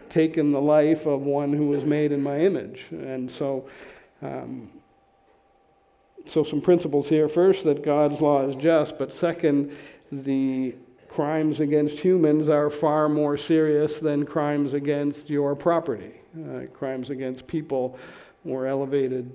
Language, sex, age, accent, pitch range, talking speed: English, male, 50-69, American, 135-155 Hz, 135 wpm